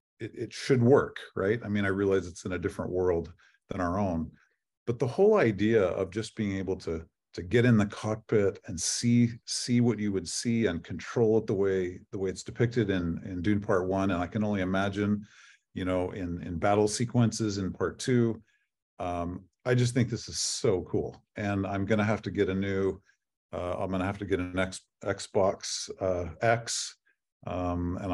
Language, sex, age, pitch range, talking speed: English, male, 50-69, 95-120 Hz, 205 wpm